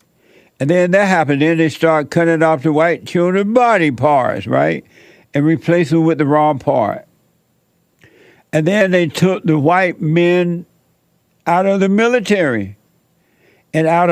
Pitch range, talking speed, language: 140-170 Hz, 150 wpm, English